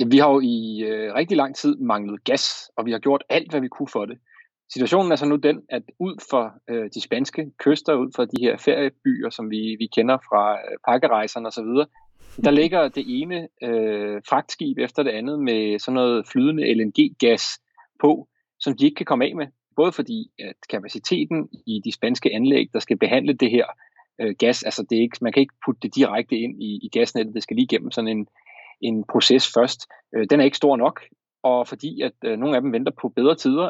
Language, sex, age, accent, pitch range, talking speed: Danish, male, 30-49, native, 115-180 Hz, 215 wpm